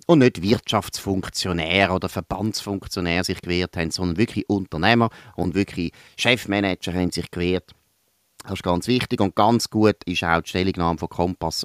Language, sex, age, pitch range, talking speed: German, male, 30-49, 90-120 Hz, 155 wpm